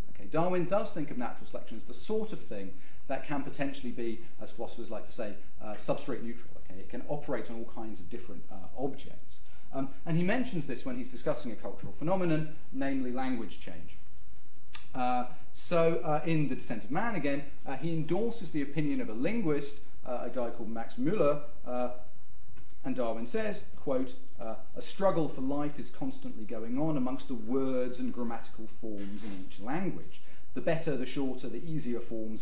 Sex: male